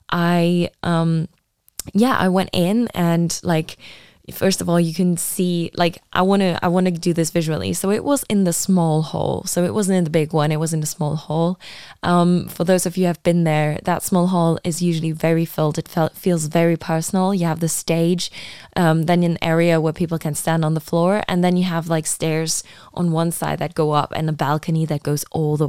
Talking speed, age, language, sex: 225 wpm, 10-29, English, female